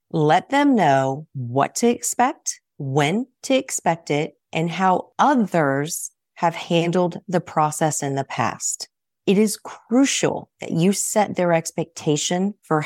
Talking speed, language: 135 wpm, English